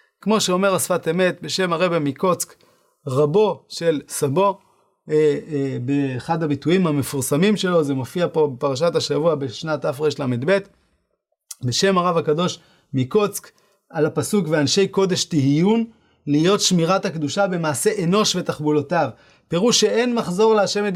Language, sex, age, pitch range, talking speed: English, male, 30-49, 150-195 Hz, 125 wpm